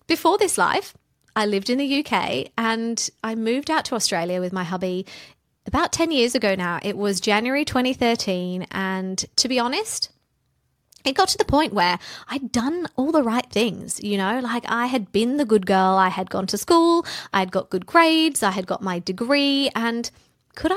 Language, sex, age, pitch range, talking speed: English, female, 20-39, 185-240 Hz, 195 wpm